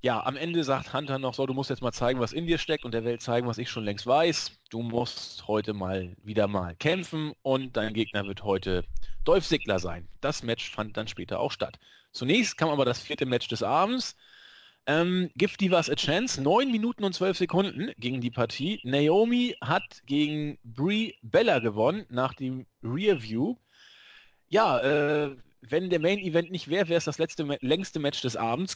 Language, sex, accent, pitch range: German, male, German, 120-170 Hz